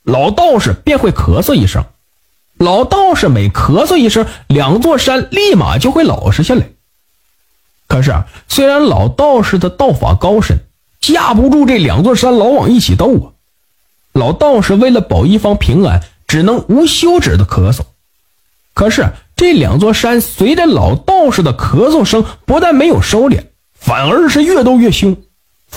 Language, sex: Chinese, male